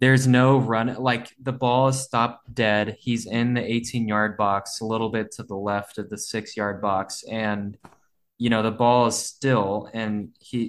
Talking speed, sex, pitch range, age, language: 195 wpm, male, 105-125 Hz, 20-39, English